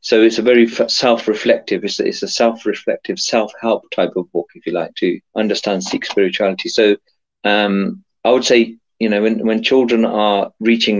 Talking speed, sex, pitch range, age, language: 190 wpm, male, 100-120 Hz, 40-59, Punjabi